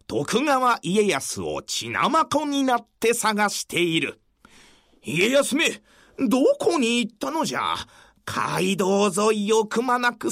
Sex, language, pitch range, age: male, Japanese, 195-270 Hz, 40-59